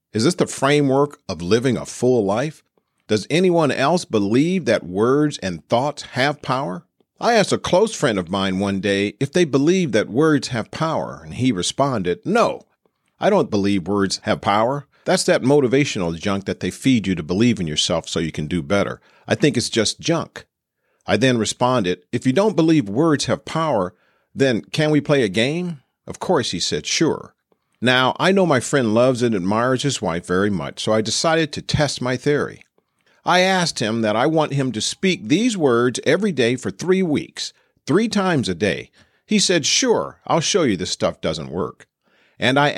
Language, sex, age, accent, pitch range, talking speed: English, male, 50-69, American, 105-155 Hz, 195 wpm